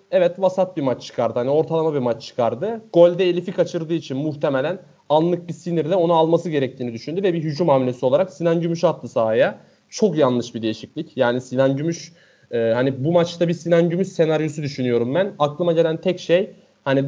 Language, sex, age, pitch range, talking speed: Turkish, male, 30-49, 135-170 Hz, 185 wpm